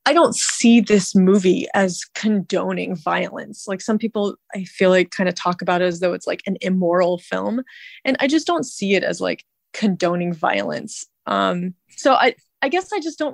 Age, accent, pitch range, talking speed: 20-39, American, 180-215 Hz, 200 wpm